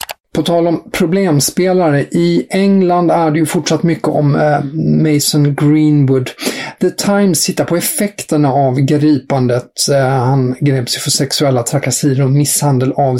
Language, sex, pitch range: English, male, 135-160 Hz